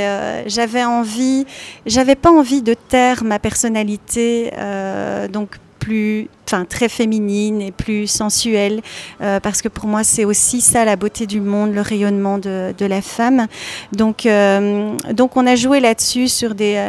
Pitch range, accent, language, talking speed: 200-235 Hz, French, French, 165 wpm